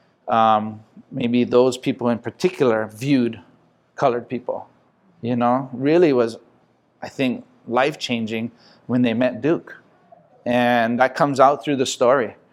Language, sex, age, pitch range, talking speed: English, male, 30-49, 115-130 Hz, 130 wpm